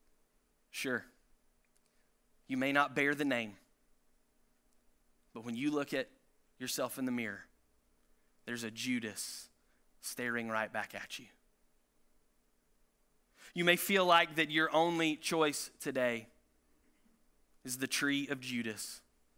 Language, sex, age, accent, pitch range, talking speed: English, male, 20-39, American, 105-160 Hz, 120 wpm